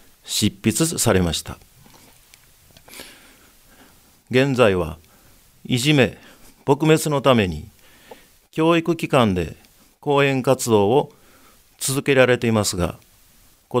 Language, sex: Japanese, male